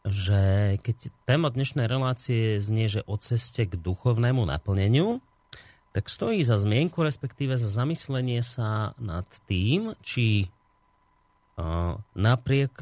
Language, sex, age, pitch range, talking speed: Slovak, male, 30-49, 100-130 Hz, 110 wpm